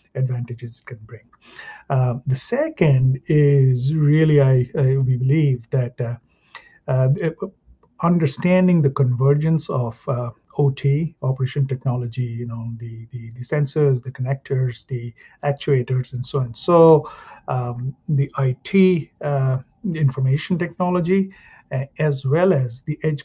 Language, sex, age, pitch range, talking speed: English, male, 50-69, 125-145 Hz, 125 wpm